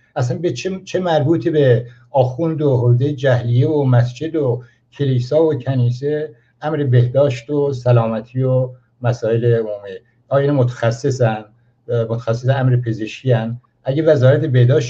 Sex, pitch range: male, 120-145 Hz